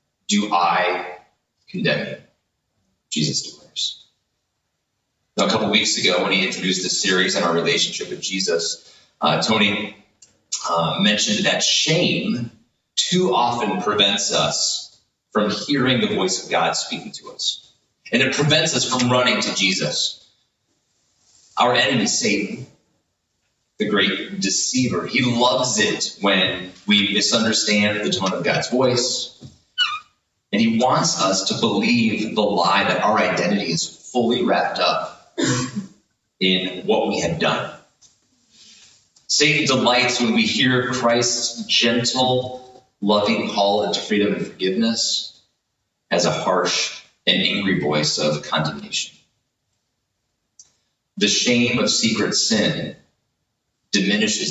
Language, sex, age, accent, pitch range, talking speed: English, male, 30-49, American, 100-130 Hz, 125 wpm